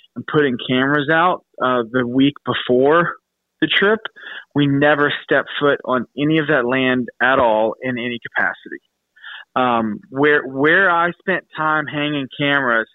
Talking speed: 150 wpm